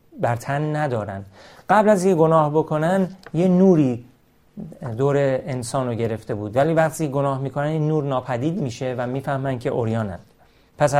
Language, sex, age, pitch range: Persian, male, 40-59, 120-155 Hz